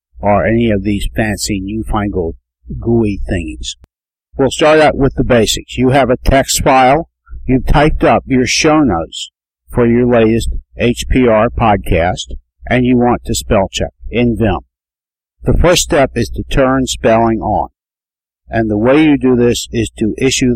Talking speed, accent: 160 wpm, American